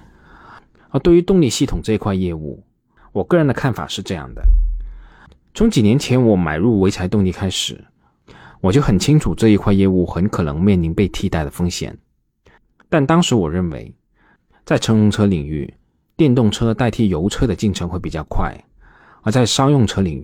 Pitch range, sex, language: 85-110 Hz, male, Chinese